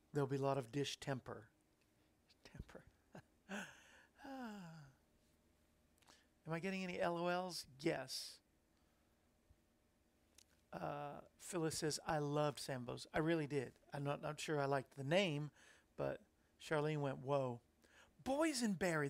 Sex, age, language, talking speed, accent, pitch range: male, 50-69, English, 115 wpm, American, 130-170 Hz